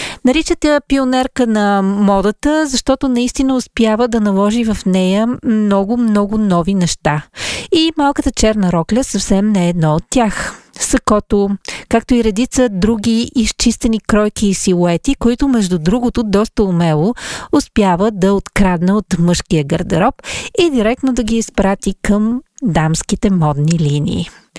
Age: 40-59